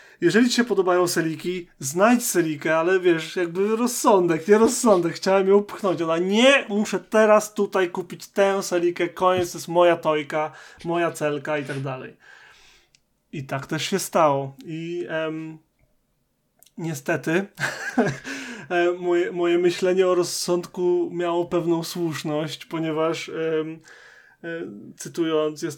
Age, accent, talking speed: 20-39, native, 130 wpm